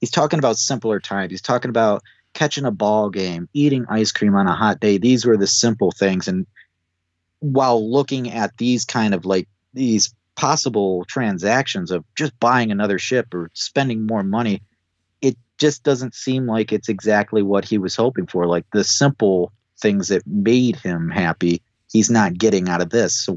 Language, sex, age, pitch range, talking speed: English, male, 30-49, 95-125 Hz, 180 wpm